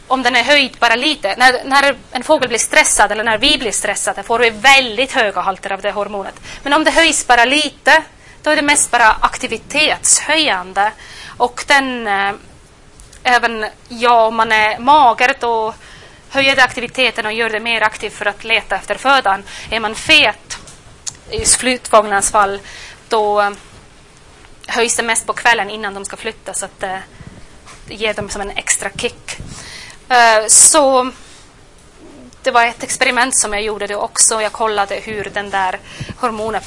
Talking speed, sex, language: 165 wpm, female, Swedish